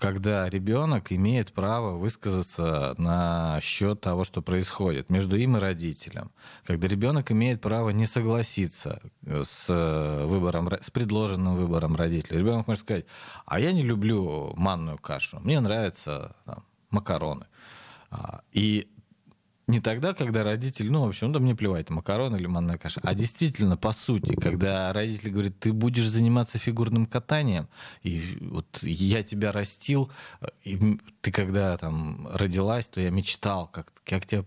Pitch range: 90-115 Hz